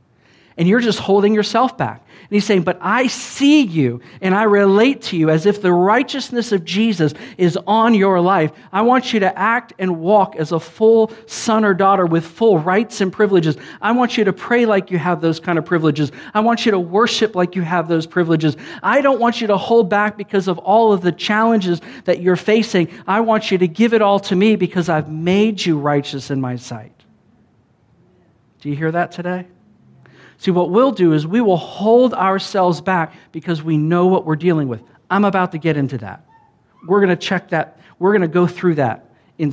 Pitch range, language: 155-210 Hz, English